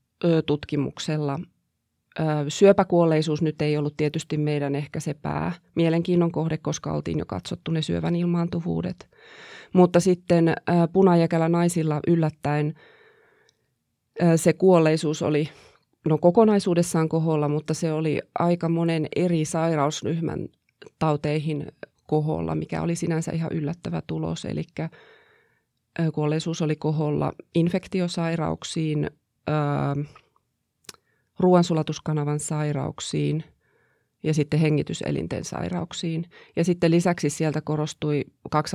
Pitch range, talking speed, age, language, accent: 150-170 Hz, 90 wpm, 30-49, Finnish, native